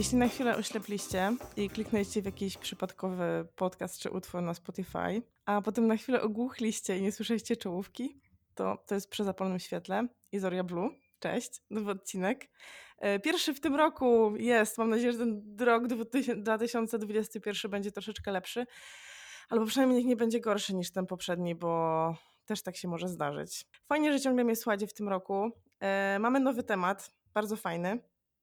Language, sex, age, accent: Polish, female, 20-39, native